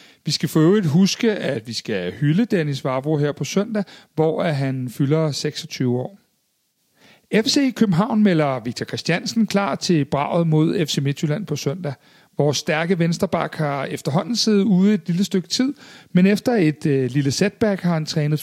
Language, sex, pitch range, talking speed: Danish, male, 140-195 Hz, 170 wpm